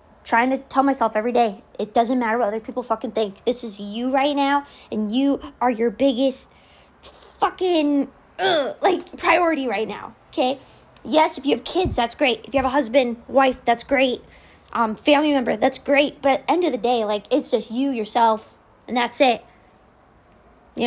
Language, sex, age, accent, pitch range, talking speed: English, female, 20-39, American, 230-285 Hz, 185 wpm